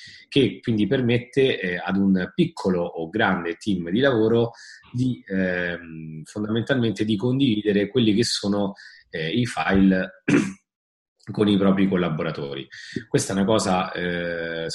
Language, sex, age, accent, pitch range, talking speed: Italian, male, 30-49, native, 90-115 Hz, 125 wpm